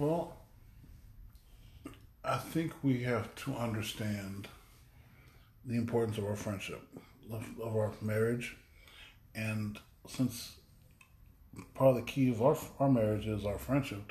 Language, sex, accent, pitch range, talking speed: English, male, American, 100-120 Hz, 120 wpm